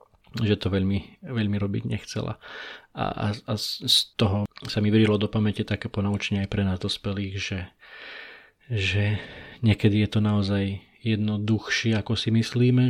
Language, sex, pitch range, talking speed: Slovak, male, 105-115 Hz, 155 wpm